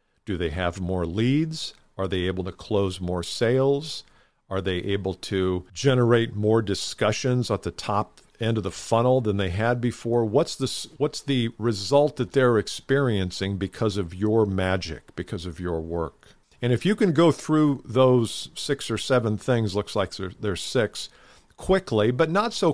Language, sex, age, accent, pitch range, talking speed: English, male, 50-69, American, 100-135 Hz, 170 wpm